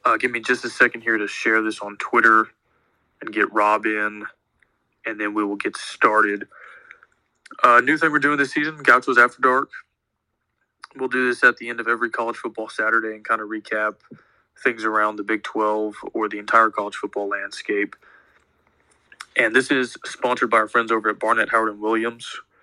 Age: 20-39